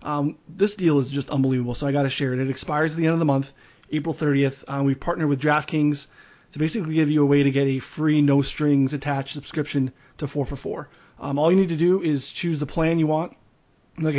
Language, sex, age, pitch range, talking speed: English, male, 30-49, 135-155 Hz, 235 wpm